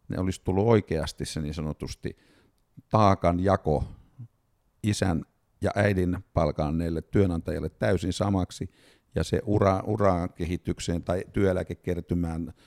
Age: 50-69